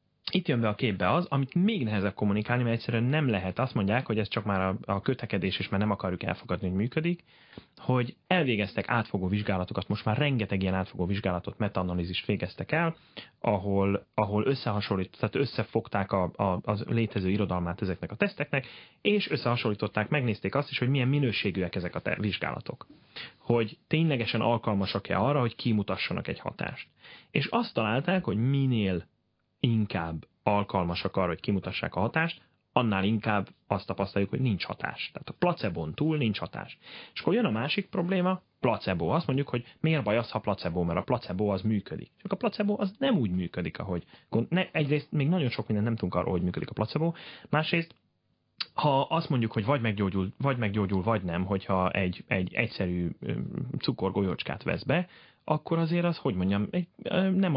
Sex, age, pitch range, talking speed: male, 30-49, 95-140 Hz, 170 wpm